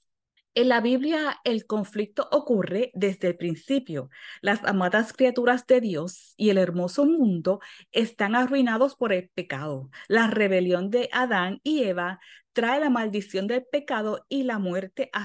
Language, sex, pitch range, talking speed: English, female, 195-255 Hz, 150 wpm